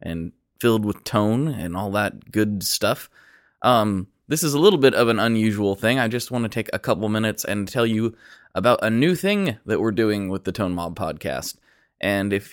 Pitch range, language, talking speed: 105-130 Hz, English, 210 wpm